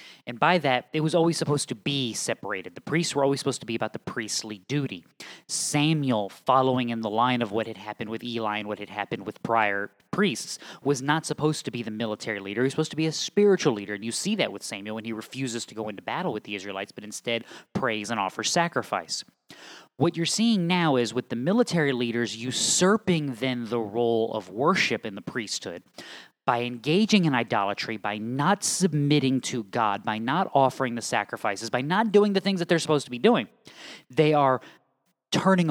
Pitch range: 115-155 Hz